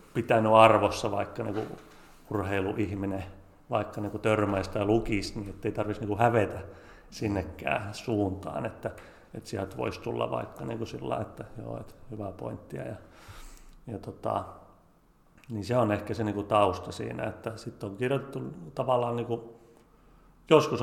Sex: male